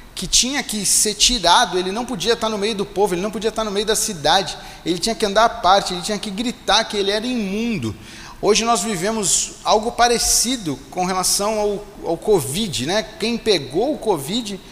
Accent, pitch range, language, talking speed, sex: Brazilian, 180-225 Hz, Portuguese, 205 wpm, male